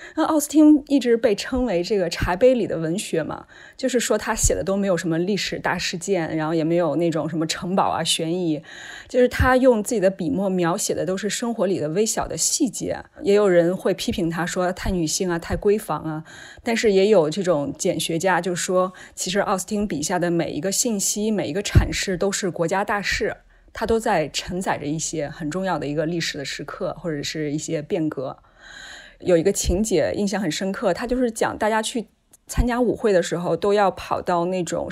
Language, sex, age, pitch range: Chinese, female, 20-39, 170-215 Hz